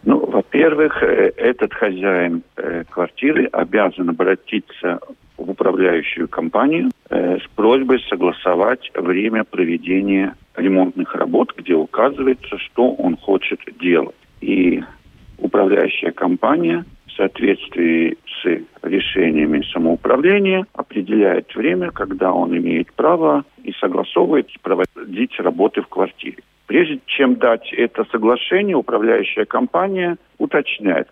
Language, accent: Russian, native